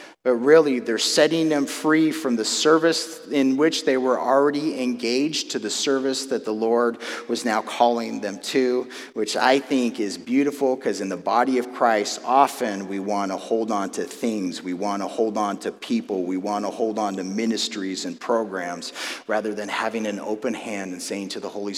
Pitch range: 110-150 Hz